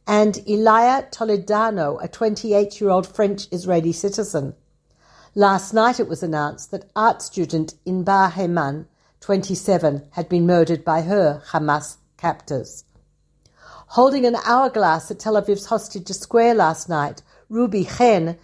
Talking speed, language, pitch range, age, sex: 120 wpm, Hebrew, 175-225 Hz, 60-79, female